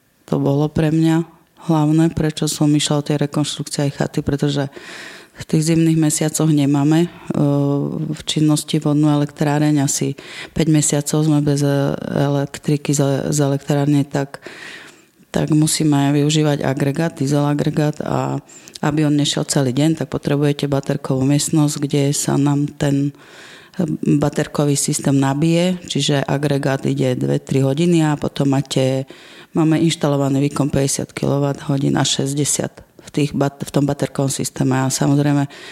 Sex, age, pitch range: female, 30-49, 140-155 Hz